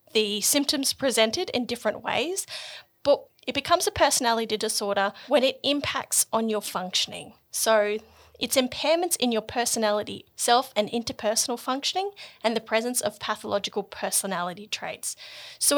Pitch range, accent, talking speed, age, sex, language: 210-285 Hz, Australian, 135 wpm, 30-49, female, English